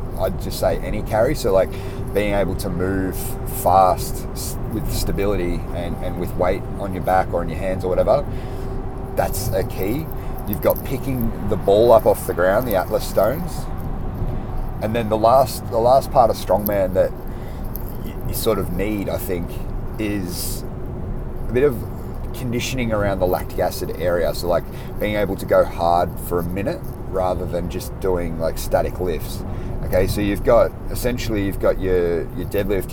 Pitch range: 90-110 Hz